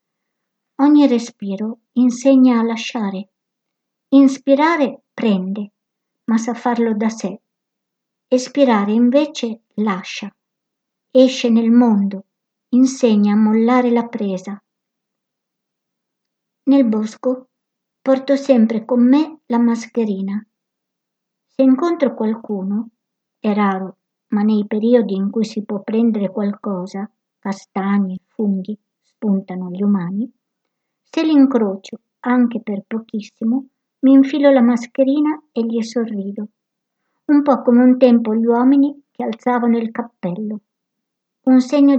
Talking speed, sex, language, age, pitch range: 105 wpm, male, Italian, 60-79, 210-250 Hz